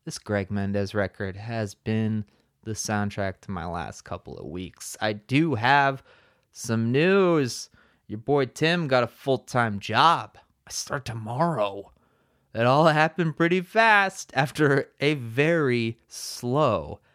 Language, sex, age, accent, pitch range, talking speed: English, male, 30-49, American, 110-170 Hz, 135 wpm